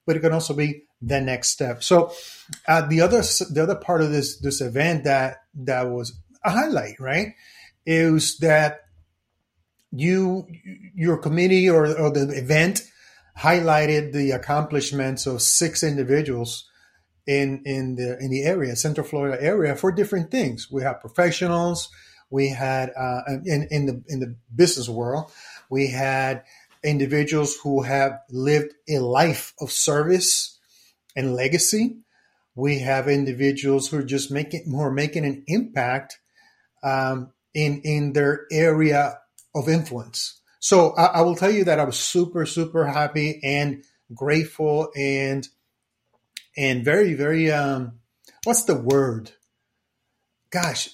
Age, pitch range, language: 30-49, 135-165 Hz, English